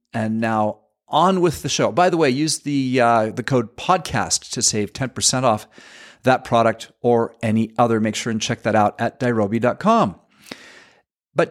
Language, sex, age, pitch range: English, male, 40-59, 110-145 Hz